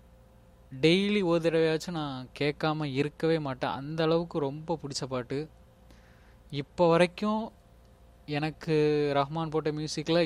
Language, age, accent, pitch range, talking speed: Tamil, 20-39, native, 120-150 Hz, 105 wpm